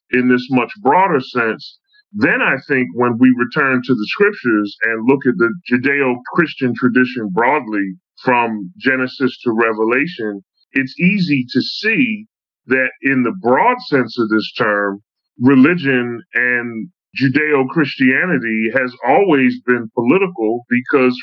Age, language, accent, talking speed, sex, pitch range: 30-49, English, American, 135 wpm, female, 125-145 Hz